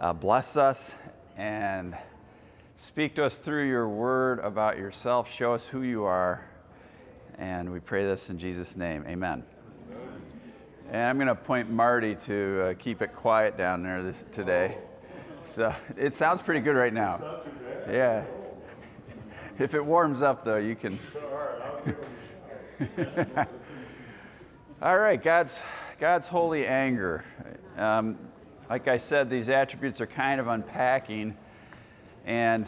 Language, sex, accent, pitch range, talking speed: English, male, American, 105-130 Hz, 130 wpm